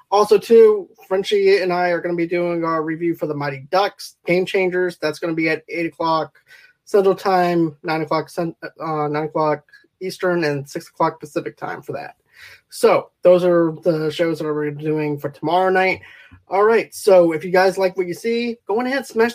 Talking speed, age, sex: 205 wpm, 20-39, male